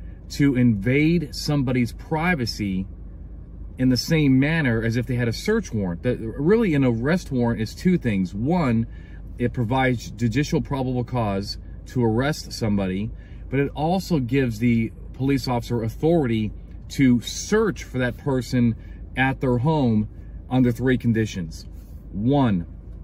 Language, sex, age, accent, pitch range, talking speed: English, male, 40-59, American, 100-130 Hz, 135 wpm